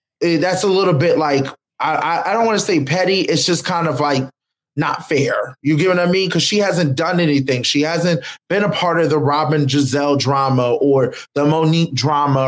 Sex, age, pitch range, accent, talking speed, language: male, 20-39, 145-180 Hz, American, 205 wpm, English